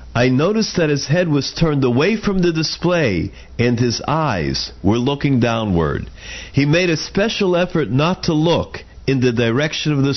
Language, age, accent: English, 50-69, American